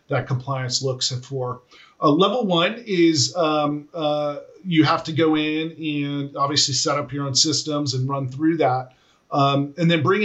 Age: 40-59